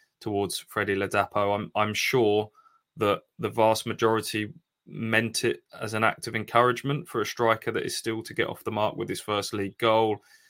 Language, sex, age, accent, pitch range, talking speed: English, male, 20-39, British, 100-115 Hz, 190 wpm